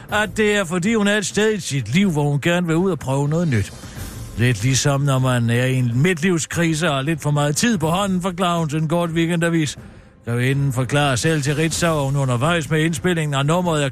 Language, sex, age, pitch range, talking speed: Danish, male, 60-79, 130-175 Hz, 235 wpm